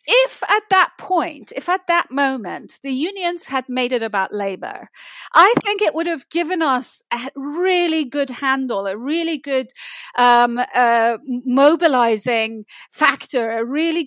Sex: female